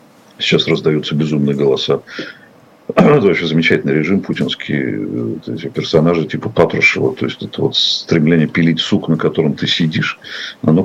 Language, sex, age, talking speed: Russian, male, 50-69, 135 wpm